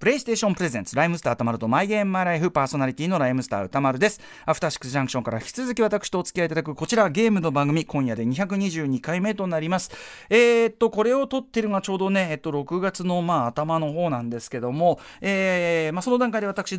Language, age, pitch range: Japanese, 40-59, 135-220 Hz